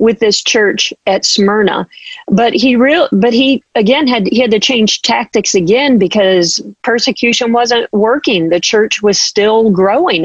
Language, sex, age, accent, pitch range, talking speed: English, female, 40-59, American, 190-230 Hz, 160 wpm